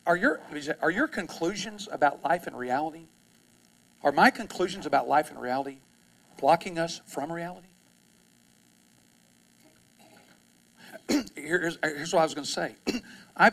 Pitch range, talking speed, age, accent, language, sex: 135-195 Hz, 130 wpm, 50-69, American, English, male